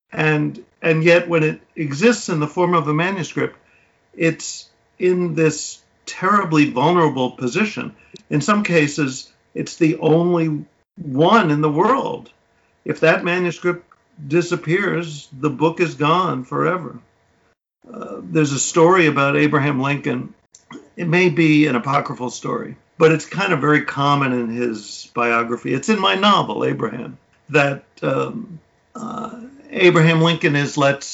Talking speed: 135 wpm